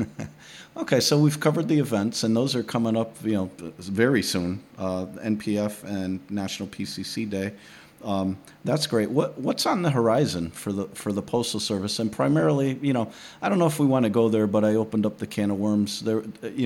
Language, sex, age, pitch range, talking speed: English, male, 40-59, 100-120 Hz, 210 wpm